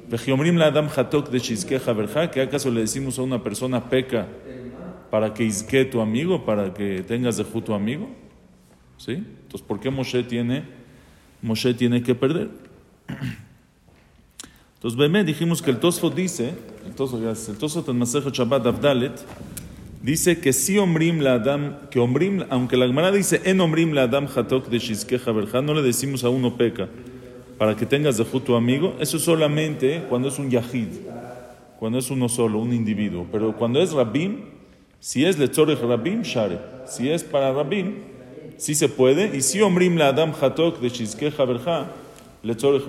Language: English